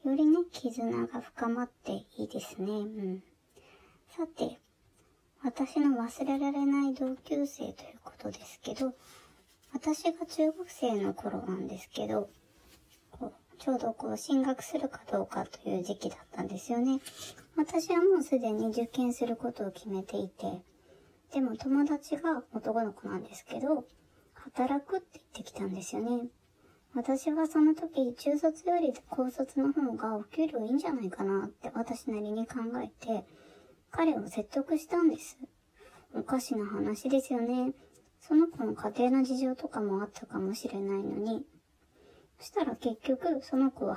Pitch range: 225-295 Hz